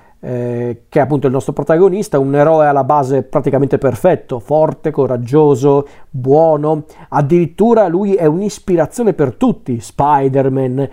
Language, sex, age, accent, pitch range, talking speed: Italian, male, 40-59, native, 135-175 Hz, 125 wpm